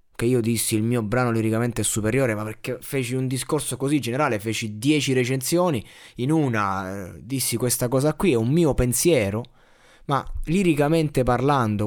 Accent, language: native, Italian